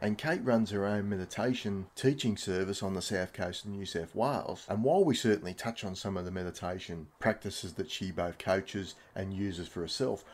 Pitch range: 90-110 Hz